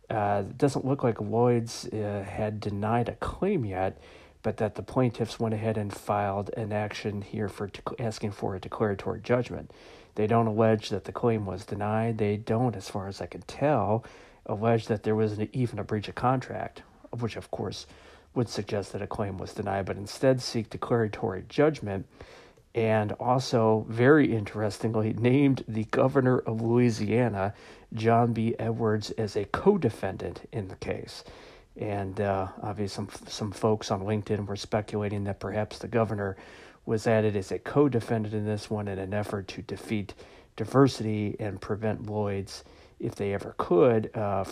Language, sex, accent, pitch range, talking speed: English, male, American, 100-115 Hz, 165 wpm